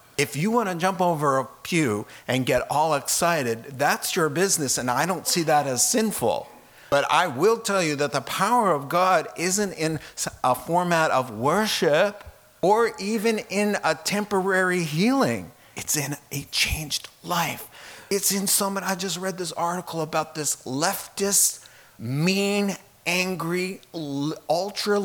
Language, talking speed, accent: English, 150 wpm, American